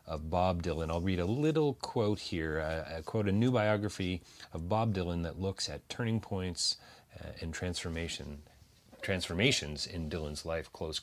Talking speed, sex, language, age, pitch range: 165 wpm, male, English, 30-49, 90-115 Hz